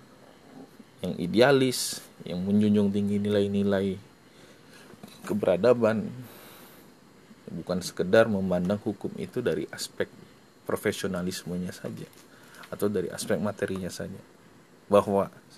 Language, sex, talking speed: English, male, 85 wpm